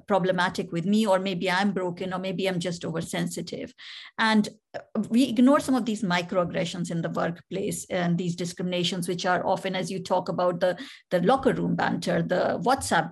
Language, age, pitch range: English, 50-69, 185-235 Hz